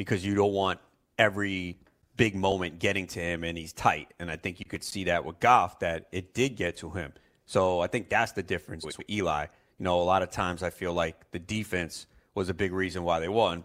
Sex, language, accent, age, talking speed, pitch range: male, English, American, 30-49, 235 wpm, 85-105 Hz